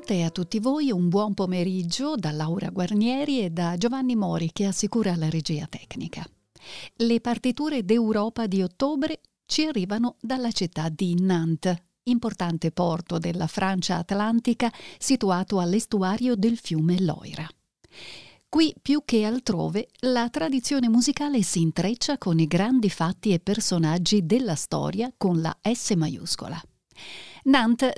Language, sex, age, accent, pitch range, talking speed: Italian, female, 40-59, native, 175-235 Hz, 135 wpm